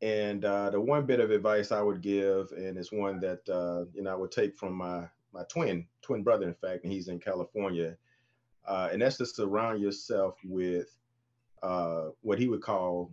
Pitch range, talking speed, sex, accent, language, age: 90-115 Hz, 200 wpm, male, American, English, 30-49